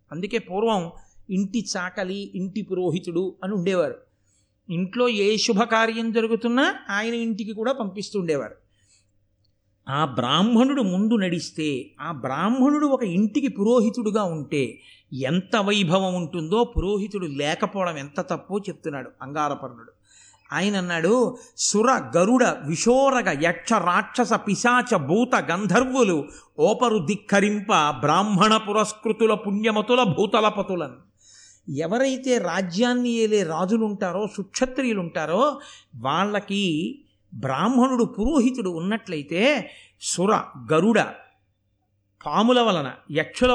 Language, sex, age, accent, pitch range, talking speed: Telugu, male, 50-69, native, 170-235 Hz, 90 wpm